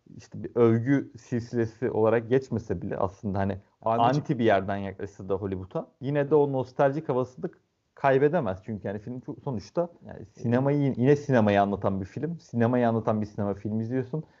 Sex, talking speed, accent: male, 165 wpm, native